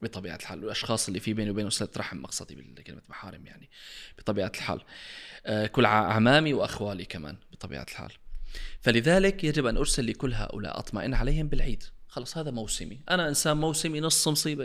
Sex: male